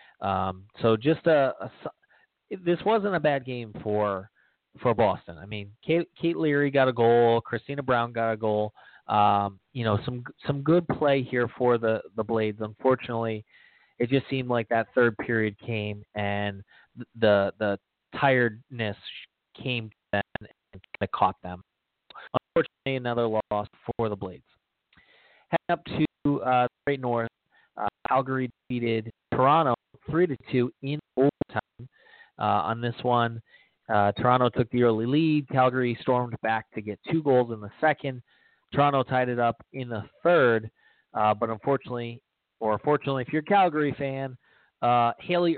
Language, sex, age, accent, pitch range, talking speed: English, male, 30-49, American, 110-135 Hz, 155 wpm